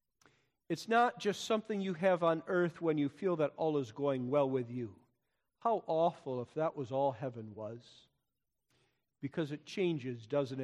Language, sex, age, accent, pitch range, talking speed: English, male, 50-69, American, 140-225 Hz, 170 wpm